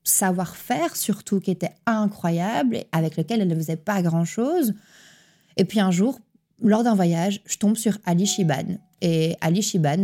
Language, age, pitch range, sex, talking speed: French, 20-39, 165-200 Hz, female, 165 wpm